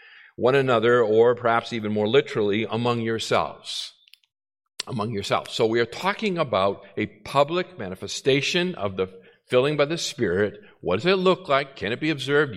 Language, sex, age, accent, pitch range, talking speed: English, male, 50-69, American, 115-175 Hz, 160 wpm